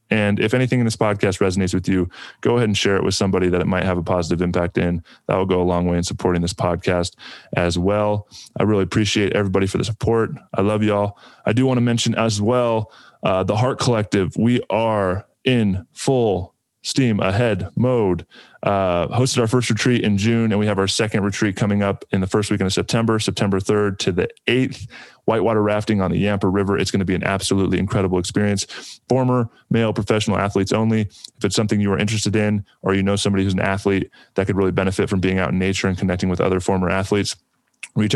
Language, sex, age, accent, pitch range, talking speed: English, male, 20-39, American, 95-110 Hz, 220 wpm